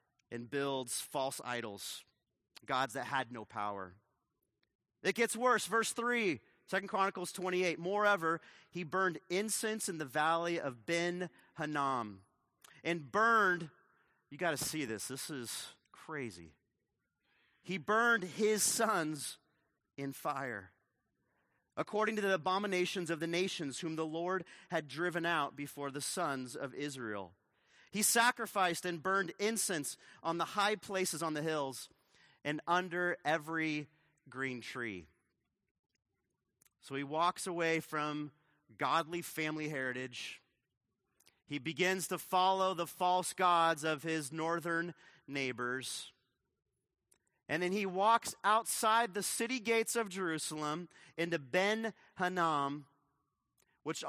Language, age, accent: English, 30-49, American